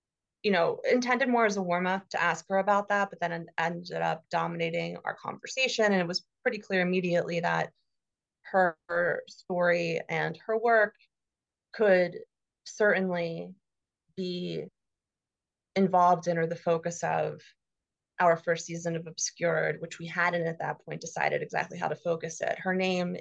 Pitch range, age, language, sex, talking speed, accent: 165-185 Hz, 30-49, English, female, 155 wpm, American